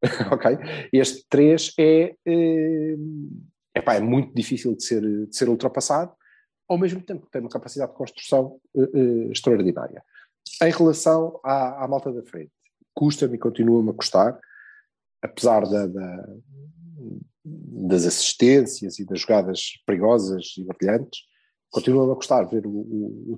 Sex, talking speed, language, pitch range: male, 140 wpm, Portuguese, 120-185 Hz